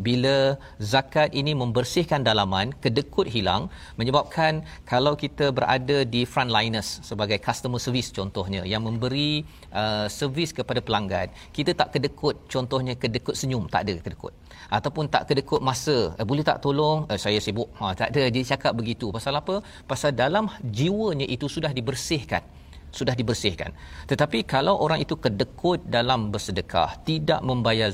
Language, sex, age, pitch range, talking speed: Malayalam, male, 40-59, 110-140 Hz, 150 wpm